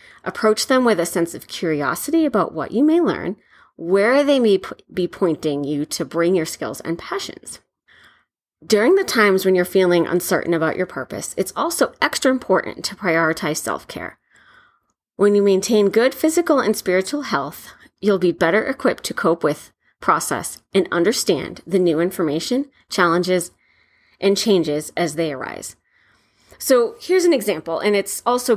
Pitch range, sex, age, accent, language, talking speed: 170-230 Hz, female, 30-49, American, English, 160 wpm